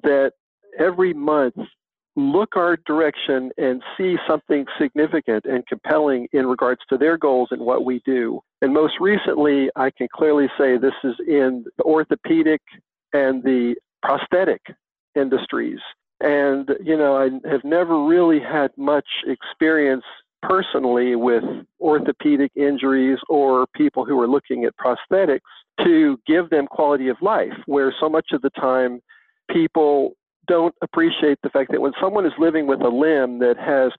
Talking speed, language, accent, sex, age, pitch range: 150 wpm, English, American, male, 50-69, 130-165 Hz